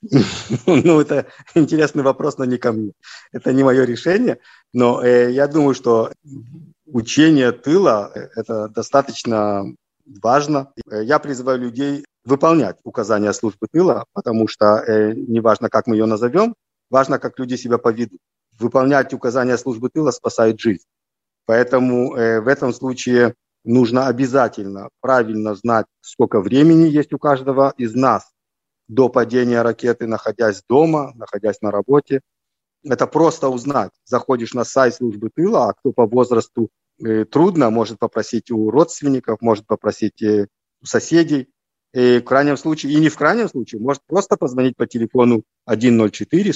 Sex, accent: male, native